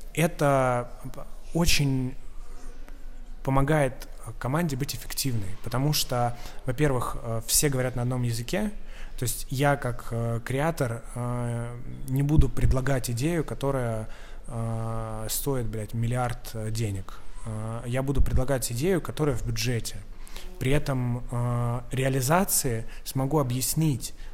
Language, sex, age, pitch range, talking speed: Russian, male, 20-39, 115-140 Hz, 95 wpm